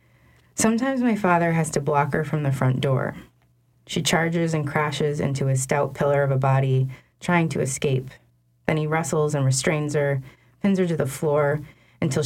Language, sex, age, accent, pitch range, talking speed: English, female, 30-49, American, 130-155 Hz, 180 wpm